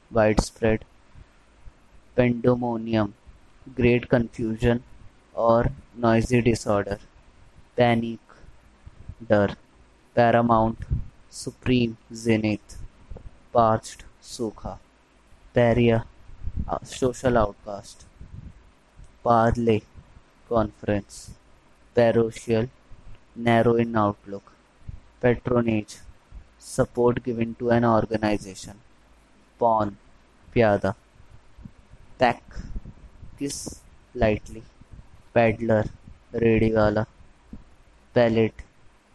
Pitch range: 100-120 Hz